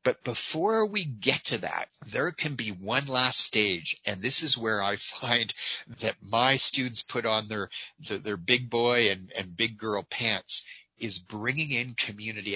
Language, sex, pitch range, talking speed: English, male, 105-130 Hz, 175 wpm